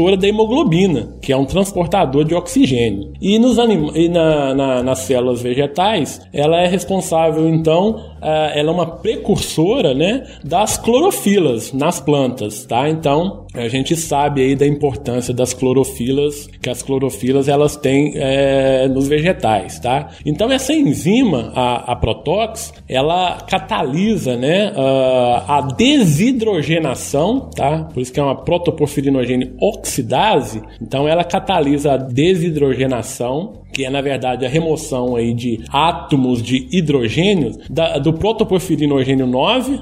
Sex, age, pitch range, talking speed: male, 20-39, 130-175 Hz, 135 wpm